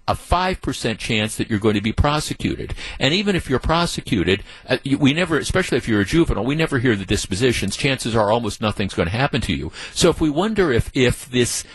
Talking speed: 215 wpm